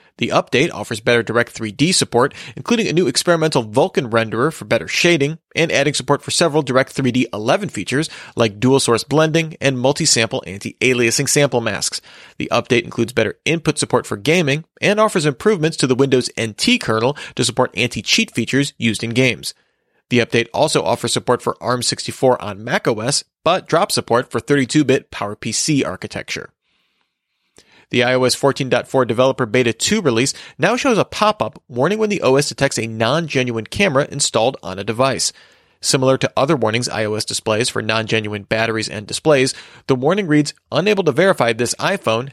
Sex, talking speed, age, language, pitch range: male, 160 wpm, 30-49, English, 115-150 Hz